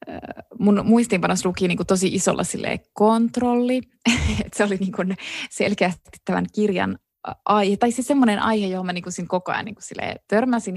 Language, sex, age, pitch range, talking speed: Finnish, female, 20-39, 190-235 Hz, 145 wpm